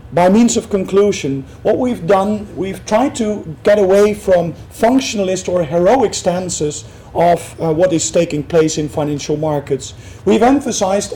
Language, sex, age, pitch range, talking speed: English, male, 40-59, 155-205 Hz, 150 wpm